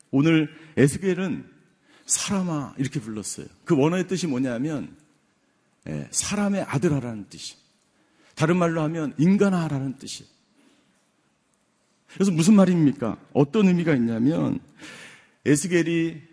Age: 50-69